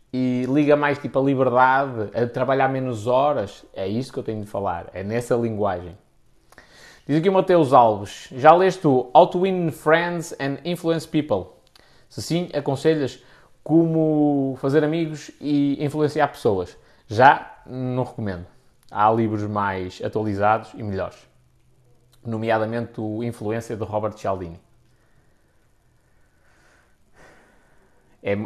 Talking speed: 120 wpm